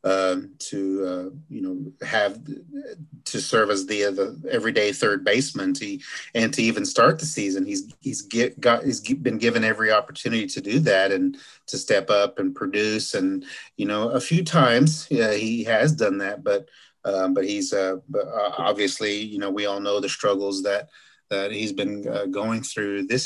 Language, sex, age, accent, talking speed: English, male, 30-49, American, 185 wpm